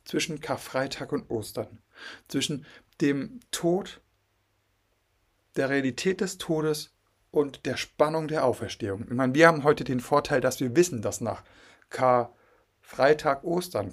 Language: German